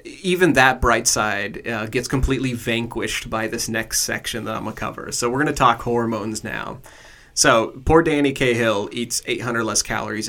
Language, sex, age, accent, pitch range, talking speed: English, male, 30-49, American, 110-125 Hz, 185 wpm